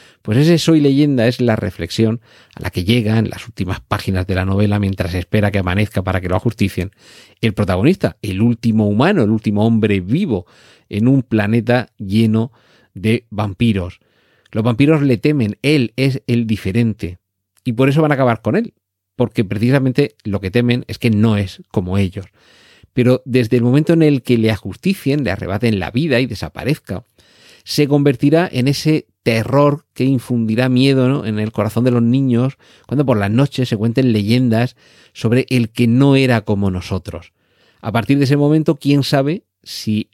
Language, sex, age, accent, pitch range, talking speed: Spanish, male, 40-59, Spanish, 105-130 Hz, 180 wpm